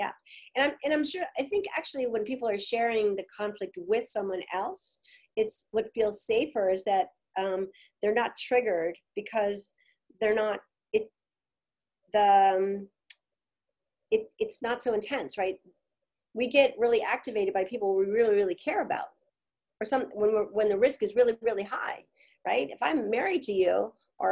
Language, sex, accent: English, female, American